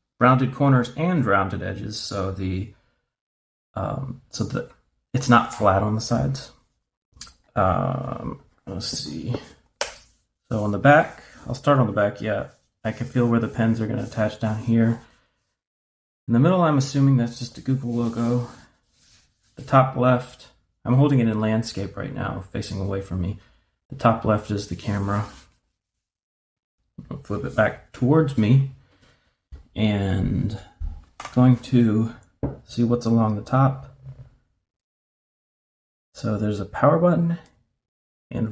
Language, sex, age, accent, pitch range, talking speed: English, male, 30-49, American, 100-125 Hz, 140 wpm